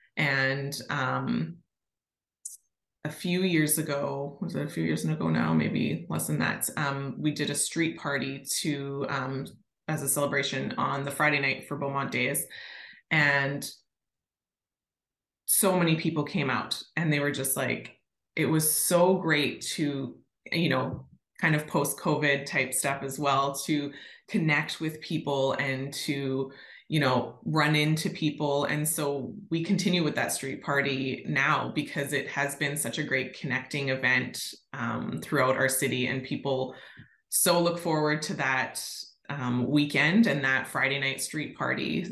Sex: female